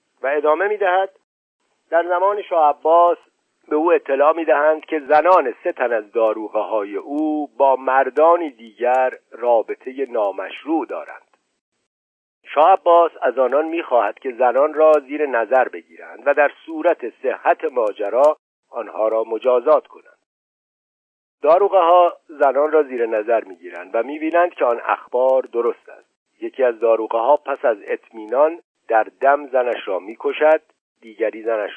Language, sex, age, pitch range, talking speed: Persian, male, 50-69, 125-175 Hz, 130 wpm